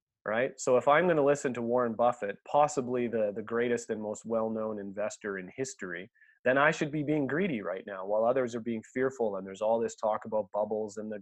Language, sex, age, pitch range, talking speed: English, male, 30-49, 105-125 Hz, 225 wpm